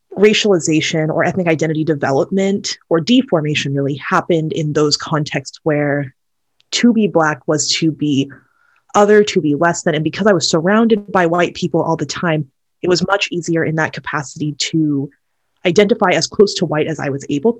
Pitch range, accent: 155-205 Hz, American